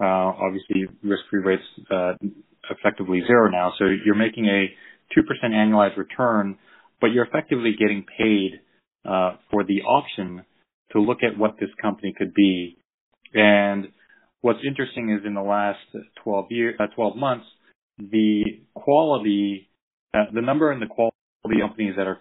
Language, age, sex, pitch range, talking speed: English, 30-49, male, 95-105 Hz, 155 wpm